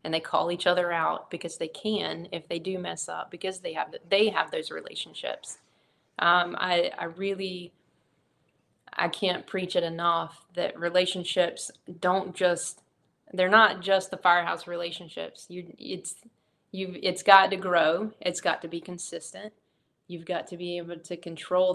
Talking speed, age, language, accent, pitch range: 165 wpm, 20-39, English, American, 170-185 Hz